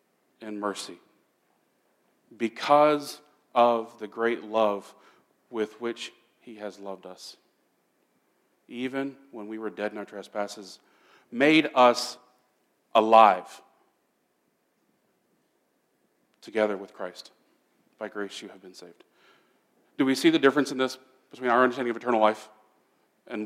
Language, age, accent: English, 40-59, American